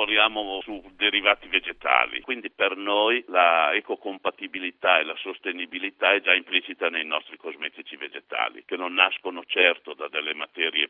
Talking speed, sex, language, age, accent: 140 wpm, male, Italian, 60-79, native